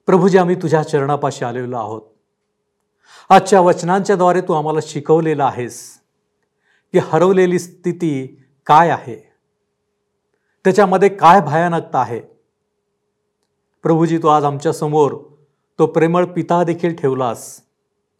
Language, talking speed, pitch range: Marathi, 95 wpm, 145-190 Hz